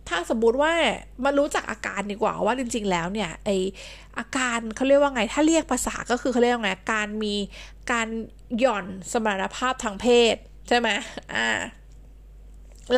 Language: Thai